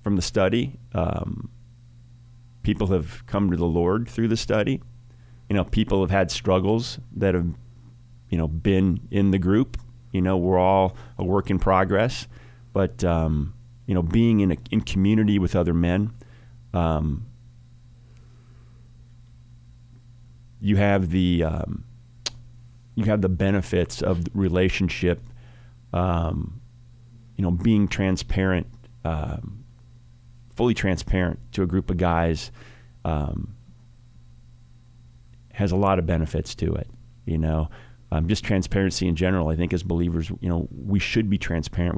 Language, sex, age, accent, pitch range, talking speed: English, male, 30-49, American, 85-120 Hz, 135 wpm